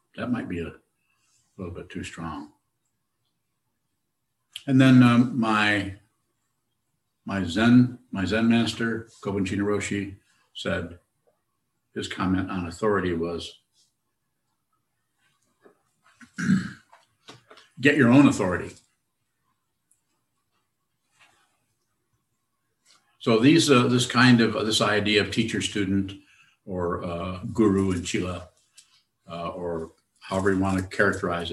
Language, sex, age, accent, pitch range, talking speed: English, male, 60-79, American, 95-115 Hz, 100 wpm